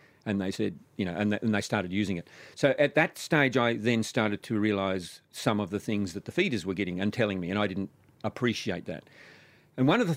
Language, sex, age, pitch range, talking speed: English, male, 50-69, 110-145 Hz, 235 wpm